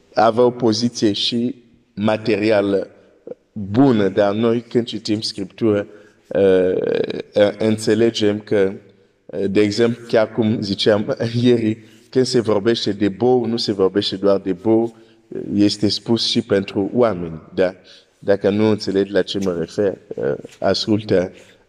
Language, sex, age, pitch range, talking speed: Romanian, male, 50-69, 100-120 Hz, 120 wpm